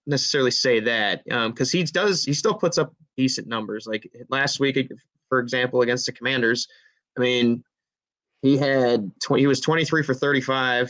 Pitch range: 120-135 Hz